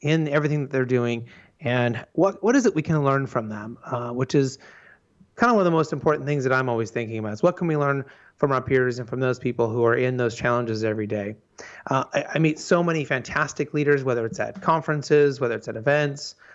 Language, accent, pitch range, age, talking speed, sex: English, American, 125-150 Hz, 30-49, 240 wpm, male